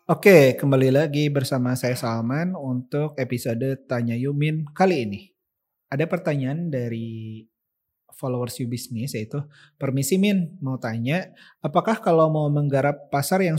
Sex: male